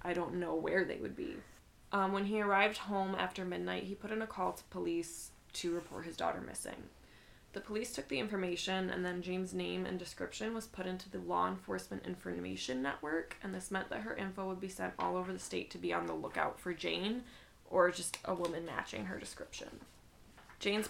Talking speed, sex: 210 wpm, female